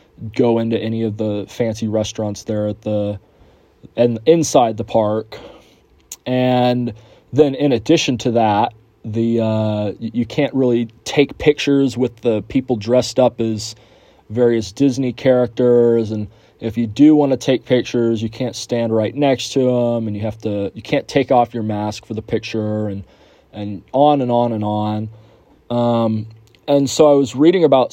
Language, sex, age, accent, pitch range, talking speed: English, male, 30-49, American, 110-130 Hz, 170 wpm